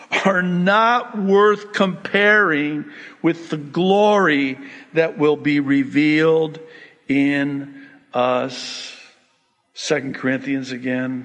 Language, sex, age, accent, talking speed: English, male, 50-69, American, 85 wpm